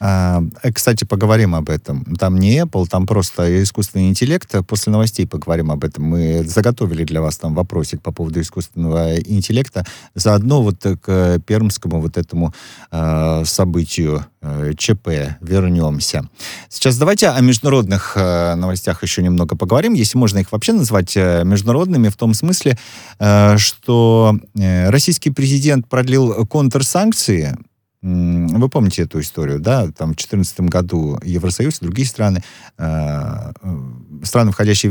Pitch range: 90-120 Hz